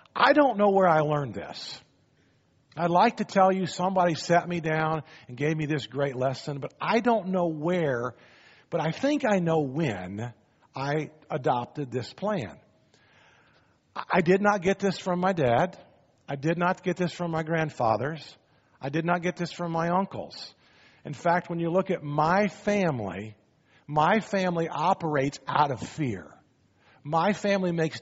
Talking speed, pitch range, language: 165 wpm, 135-180 Hz, English